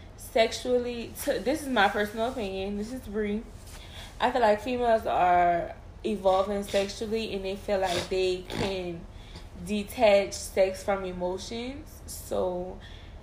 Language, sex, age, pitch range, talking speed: English, female, 20-39, 170-210 Hz, 125 wpm